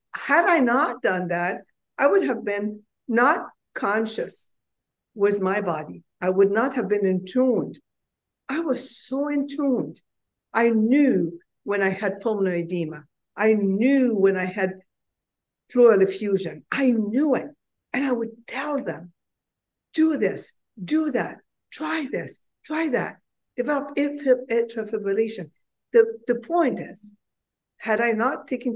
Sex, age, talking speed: female, 60-79, 130 wpm